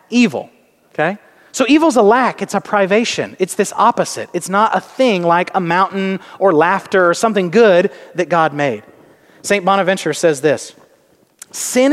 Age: 30-49